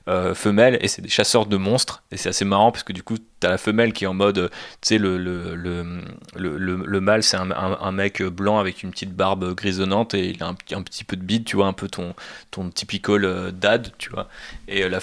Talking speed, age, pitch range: 265 wpm, 20-39, 95-110 Hz